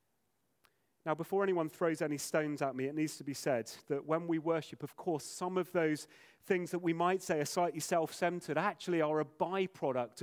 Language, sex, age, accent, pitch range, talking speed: English, male, 30-49, British, 145-180 Hz, 200 wpm